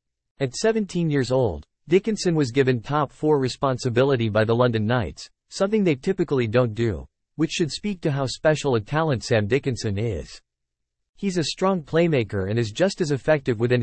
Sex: male